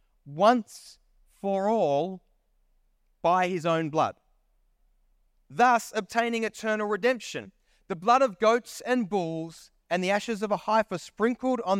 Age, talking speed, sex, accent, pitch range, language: 30-49, 125 wpm, male, Australian, 170-225 Hz, English